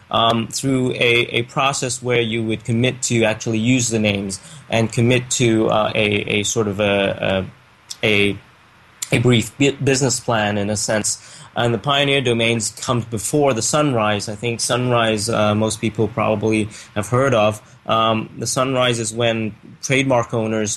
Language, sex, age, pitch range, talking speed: English, male, 20-39, 110-125 Hz, 160 wpm